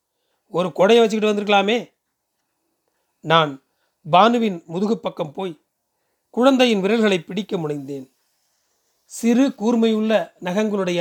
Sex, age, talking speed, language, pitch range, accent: male, 40-59, 80 wpm, Tamil, 165-215 Hz, native